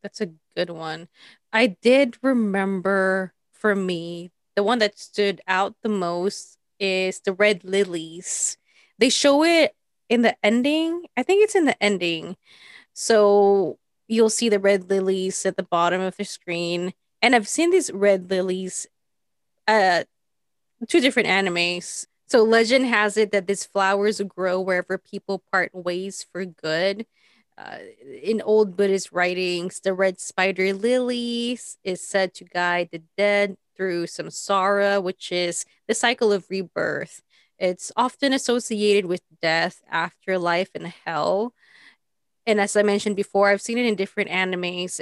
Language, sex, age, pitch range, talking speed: English, female, 20-39, 185-220 Hz, 145 wpm